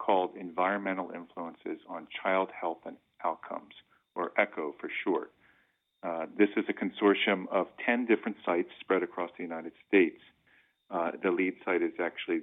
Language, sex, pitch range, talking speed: English, male, 90-120 Hz, 155 wpm